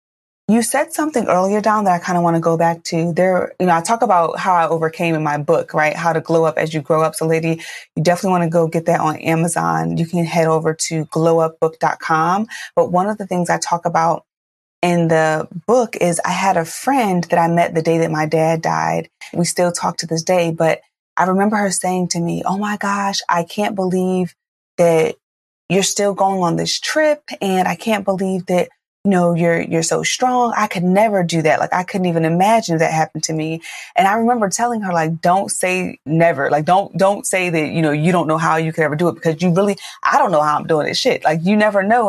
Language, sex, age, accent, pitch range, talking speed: English, female, 20-39, American, 165-195 Hz, 240 wpm